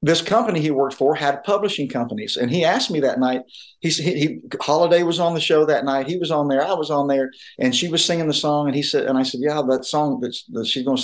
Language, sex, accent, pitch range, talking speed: English, male, American, 130-165 Hz, 285 wpm